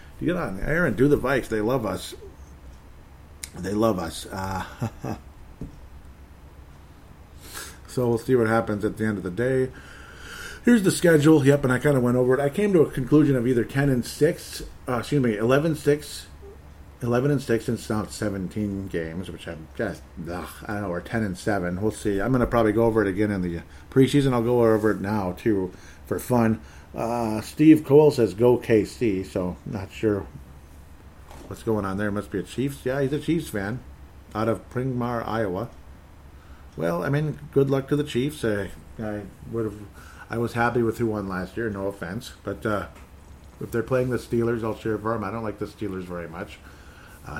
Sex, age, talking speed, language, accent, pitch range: male, 50-69, 195 wpm, English, American, 85-120 Hz